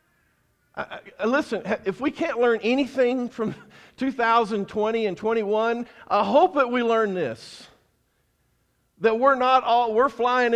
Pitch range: 185-235 Hz